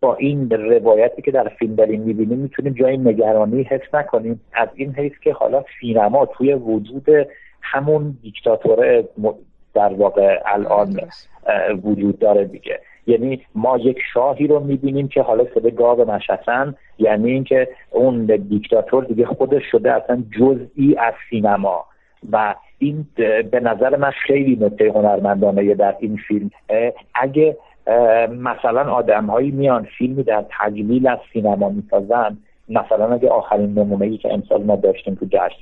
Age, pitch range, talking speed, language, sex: 50-69, 110-140 Hz, 140 wpm, Persian, male